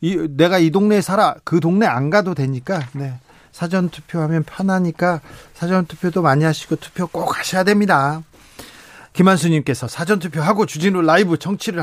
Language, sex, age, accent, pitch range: Korean, male, 40-59, native, 145-200 Hz